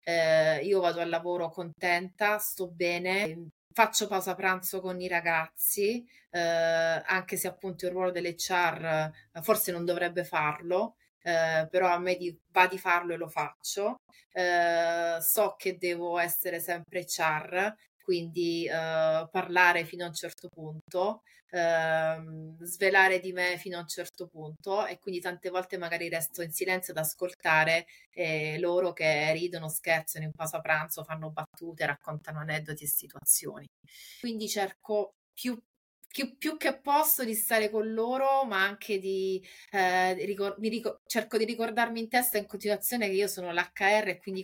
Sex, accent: female, native